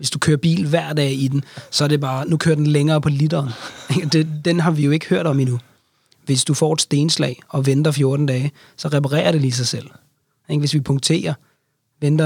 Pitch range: 140-165 Hz